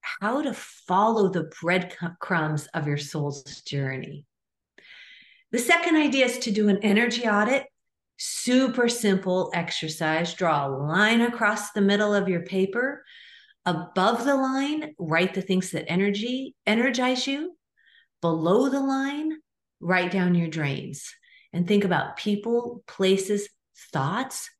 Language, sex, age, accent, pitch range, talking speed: English, female, 50-69, American, 160-230 Hz, 130 wpm